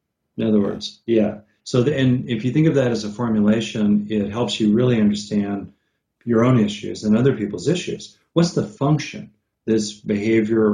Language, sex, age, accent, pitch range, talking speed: English, male, 40-59, American, 105-125 Hz, 180 wpm